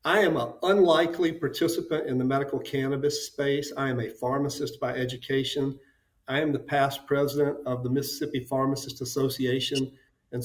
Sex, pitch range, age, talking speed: male, 130-155 Hz, 50-69, 155 wpm